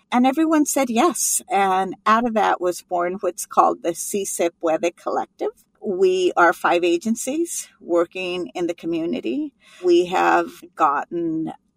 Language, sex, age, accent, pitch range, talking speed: English, female, 50-69, American, 170-230 Hz, 135 wpm